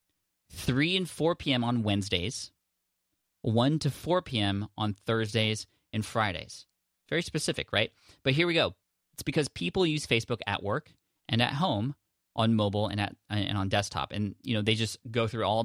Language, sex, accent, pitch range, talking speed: English, male, American, 100-120 Hz, 175 wpm